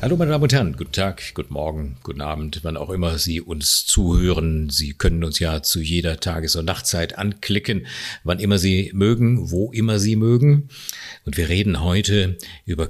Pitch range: 85-120 Hz